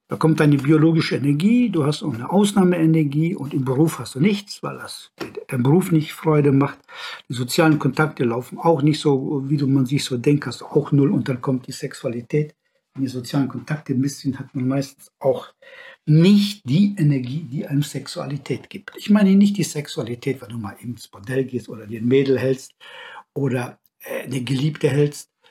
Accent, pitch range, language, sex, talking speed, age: German, 140-180 Hz, German, male, 190 wpm, 60-79